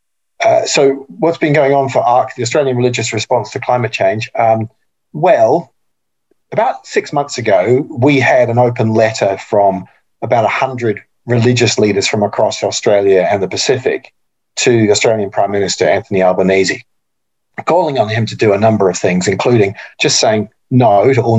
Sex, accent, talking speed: male, Australian, 165 wpm